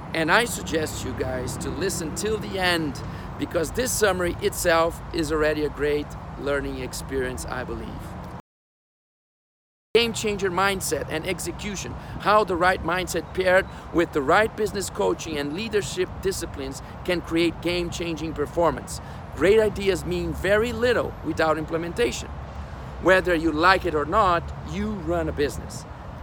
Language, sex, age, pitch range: English, male, 50-69, 140-190 Hz